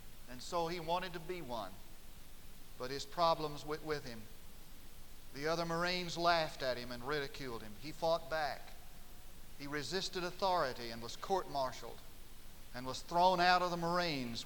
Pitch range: 125-180 Hz